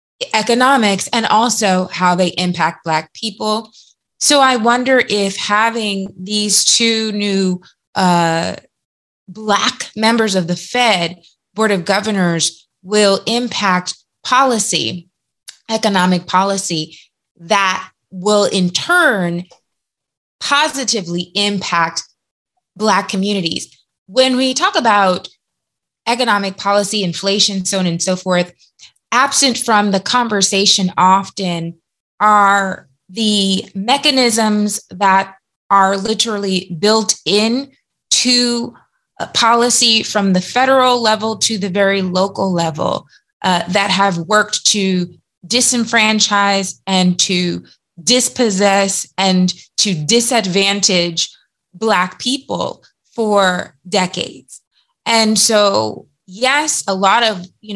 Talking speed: 100 wpm